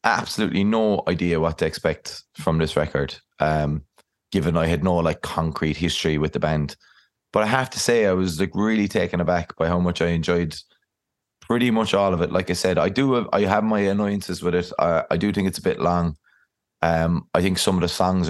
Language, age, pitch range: English, 20-39, 85-100 Hz